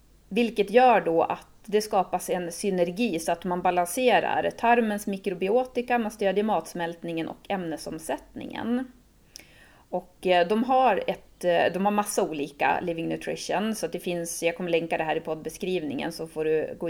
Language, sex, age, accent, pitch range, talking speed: Swedish, female, 30-49, native, 170-220 Hz, 155 wpm